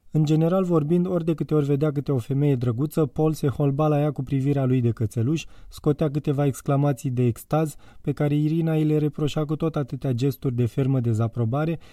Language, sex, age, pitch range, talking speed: Romanian, male, 20-39, 125-155 Hz, 200 wpm